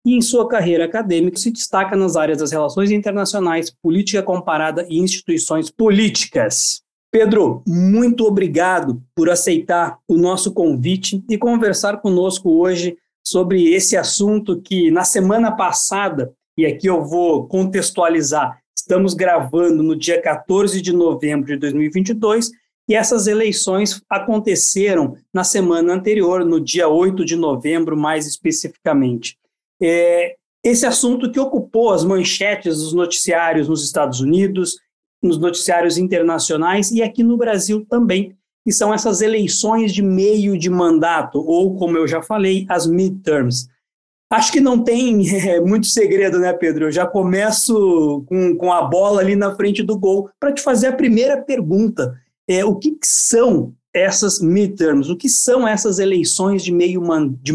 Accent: Brazilian